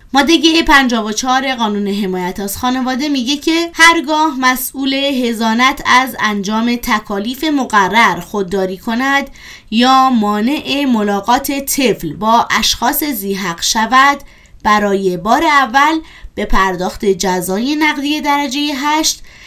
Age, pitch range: 20-39, 195-280 Hz